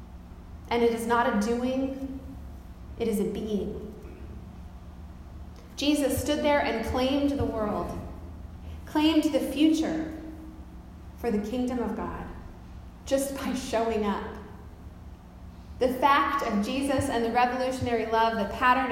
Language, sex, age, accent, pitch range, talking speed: English, female, 30-49, American, 175-270 Hz, 125 wpm